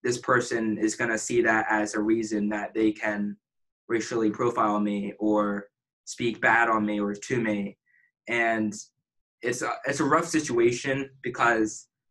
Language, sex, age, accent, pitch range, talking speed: English, male, 20-39, American, 105-125 Hz, 155 wpm